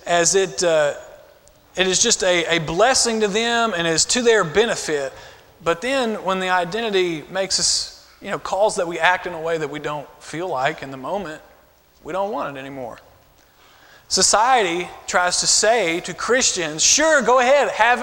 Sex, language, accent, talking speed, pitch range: male, English, American, 185 wpm, 185-250 Hz